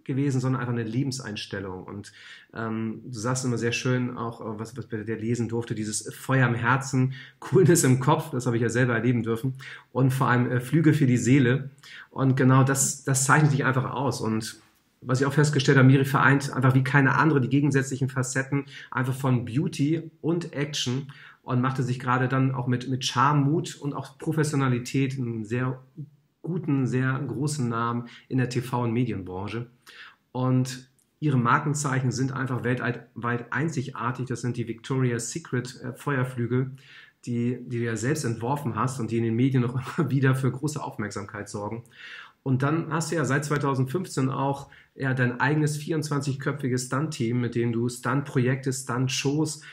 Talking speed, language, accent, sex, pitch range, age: 170 wpm, German, German, male, 120-140 Hz, 40-59